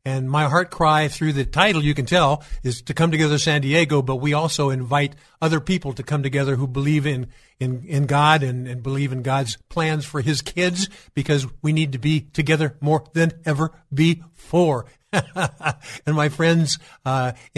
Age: 50-69